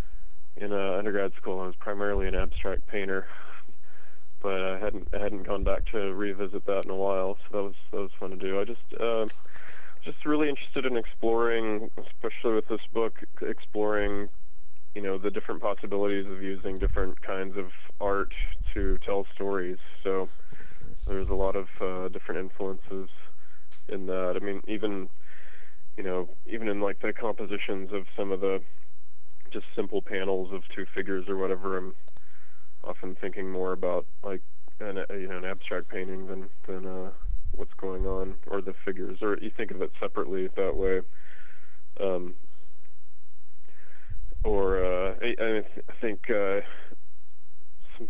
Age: 20-39